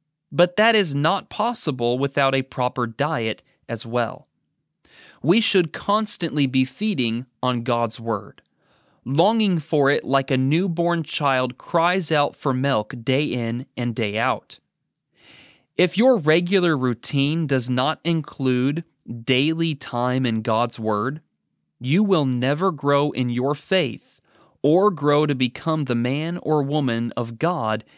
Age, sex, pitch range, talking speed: 30-49, male, 125-165 Hz, 135 wpm